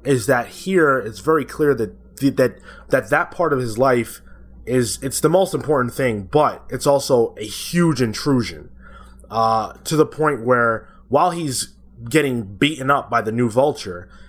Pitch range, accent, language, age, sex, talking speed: 110-140 Hz, American, English, 20-39, male, 170 wpm